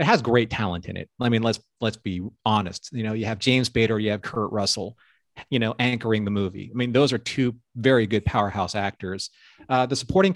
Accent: American